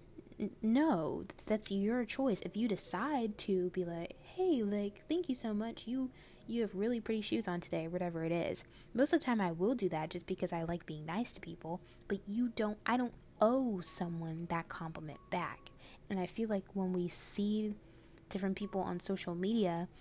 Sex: female